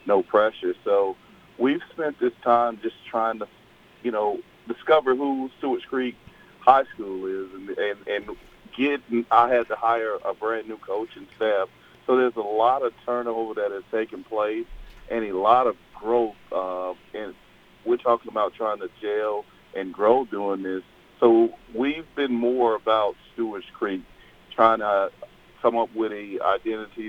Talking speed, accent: 165 wpm, American